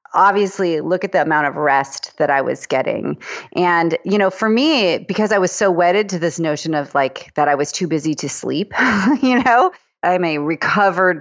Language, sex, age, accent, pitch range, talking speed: English, female, 30-49, American, 165-210 Hz, 205 wpm